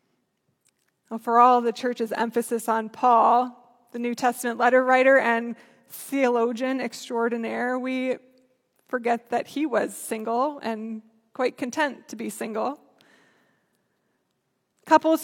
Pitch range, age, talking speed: 235-275 Hz, 20-39, 110 wpm